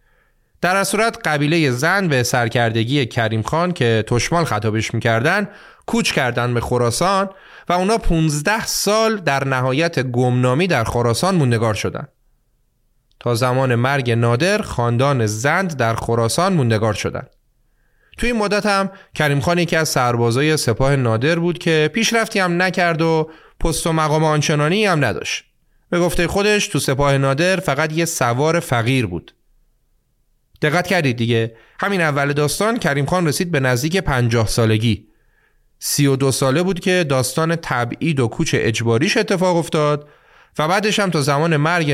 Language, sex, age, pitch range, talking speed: Persian, male, 30-49, 120-175 Hz, 145 wpm